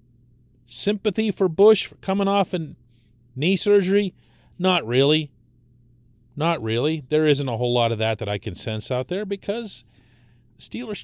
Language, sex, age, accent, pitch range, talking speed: English, male, 40-59, American, 115-155 Hz, 150 wpm